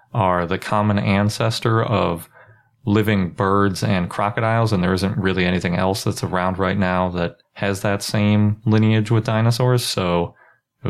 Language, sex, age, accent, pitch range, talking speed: English, male, 30-49, American, 90-110 Hz, 155 wpm